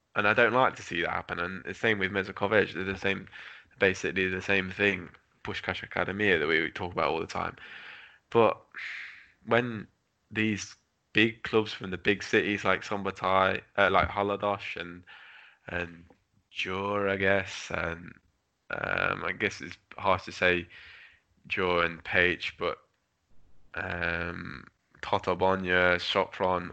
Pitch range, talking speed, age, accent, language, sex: 90-105 Hz, 145 wpm, 10-29, British, English, male